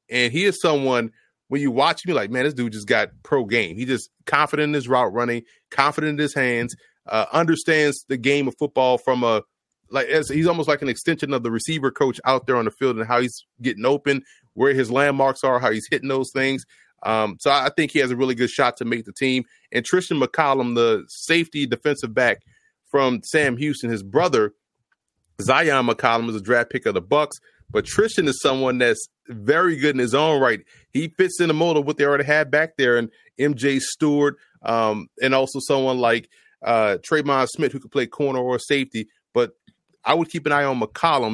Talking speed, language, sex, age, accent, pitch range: 220 wpm, English, male, 30-49, American, 120-150 Hz